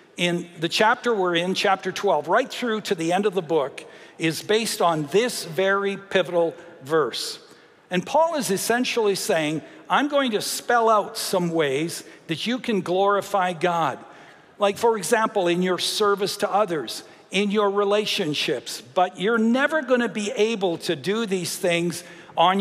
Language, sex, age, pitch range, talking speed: English, male, 60-79, 175-220 Hz, 165 wpm